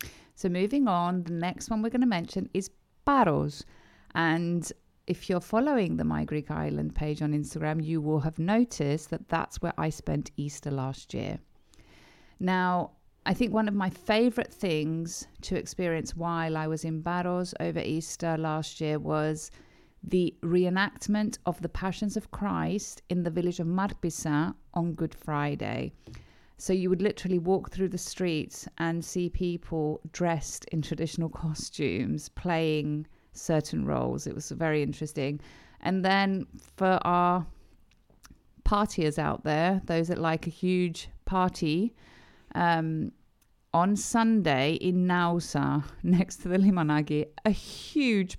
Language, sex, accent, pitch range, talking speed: Greek, female, British, 155-190 Hz, 145 wpm